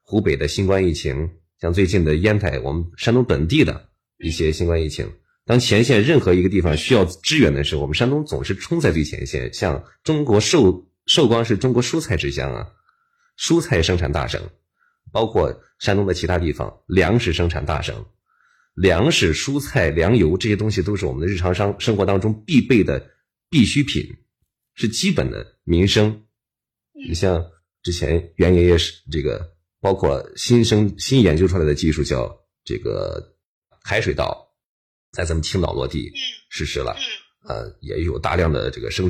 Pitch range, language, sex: 85-120 Hz, Chinese, male